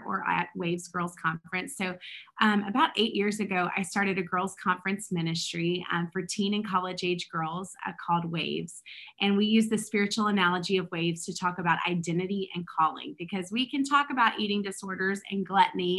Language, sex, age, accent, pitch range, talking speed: English, female, 30-49, American, 175-205 Hz, 190 wpm